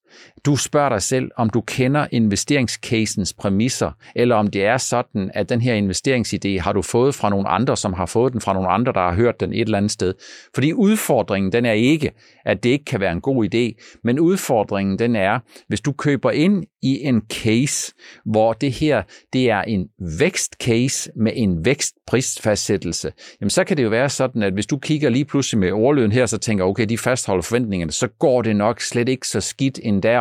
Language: Danish